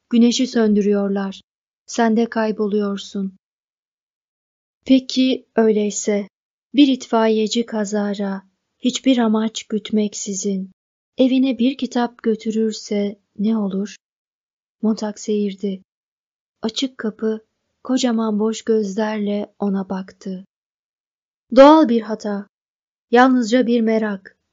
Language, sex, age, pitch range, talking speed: Turkish, female, 30-49, 205-240 Hz, 85 wpm